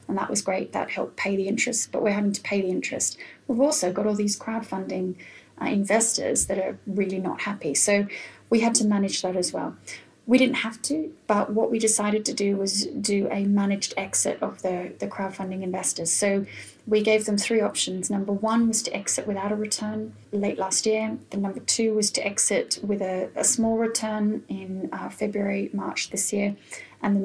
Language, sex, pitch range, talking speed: English, female, 195-225 Hz, 205 wpm